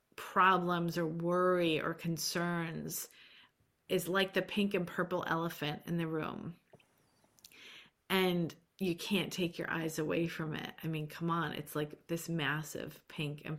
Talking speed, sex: 150 wpm, female